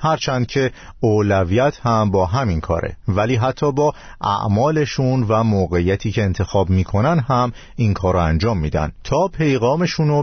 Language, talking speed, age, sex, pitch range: Persian, 135 wpm, 50-69, male, 95-135 Hz